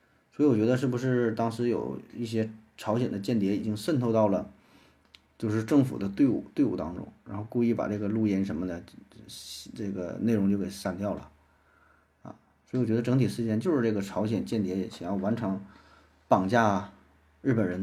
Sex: male